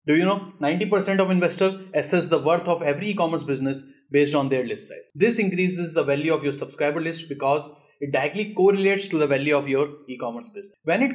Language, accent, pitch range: English, Indian, 140-190 Hz